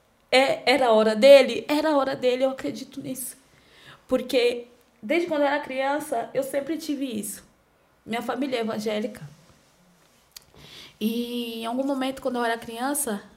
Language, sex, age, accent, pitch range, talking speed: Portuguese, female, 20-39, Brazilian, 215-265 Hz, 150 wpm